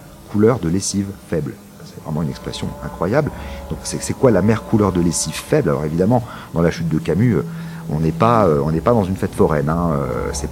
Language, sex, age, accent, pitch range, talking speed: French, male, 40-59, French, 80-110 Hz, 220 wpm